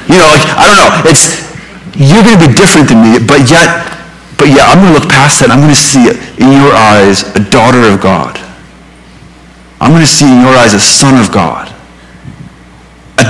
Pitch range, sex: 100-140 Hz, male